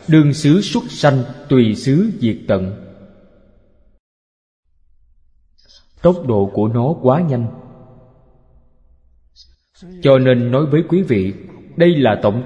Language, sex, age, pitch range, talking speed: Vietnamese, male, 20-39, 105-170 Hz, 110 wpm